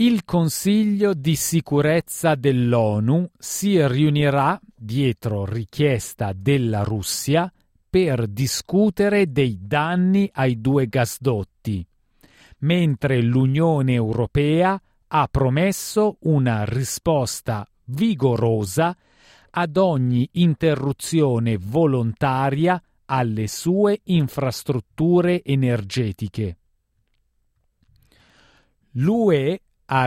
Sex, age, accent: male, 40-59, native